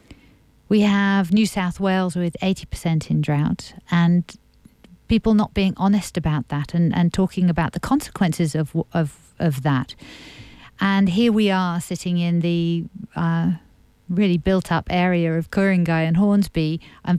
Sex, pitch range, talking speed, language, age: female, 160-185 Hz, 155 wpm, English, 50-69